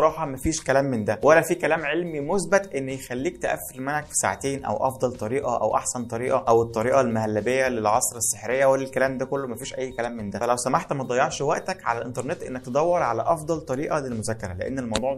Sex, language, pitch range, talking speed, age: male, Arabic, 120-155 Hz, 200 wpm, 20-39